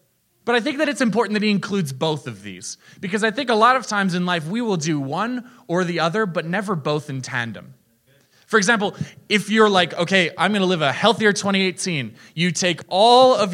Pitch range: 125-195 Hz